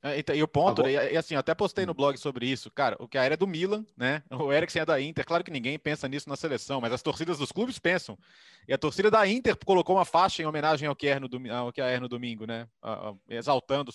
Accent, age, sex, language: Brazilian, 20-39, male, Portuguese